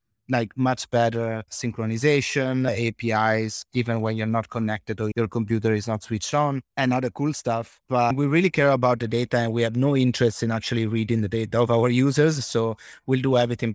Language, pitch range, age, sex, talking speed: English, 115-140 Hz, 30-49, male, 195 wpm